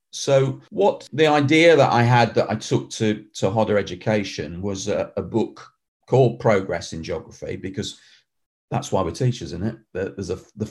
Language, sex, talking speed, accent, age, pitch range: English, male, 180 wpm, British, 40-59, 100-125 Hz